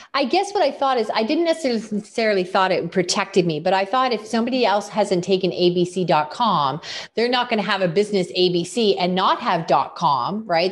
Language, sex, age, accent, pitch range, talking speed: English, female, 30-49, American, 175-245 Hz, 195 wpm